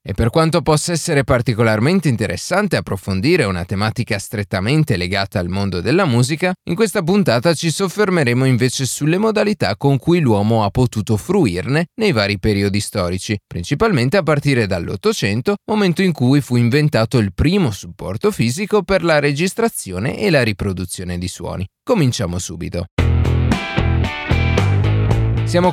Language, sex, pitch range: Italian, male, 100-155 Hz